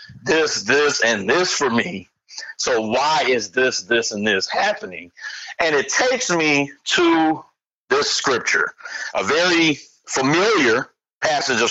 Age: 60-79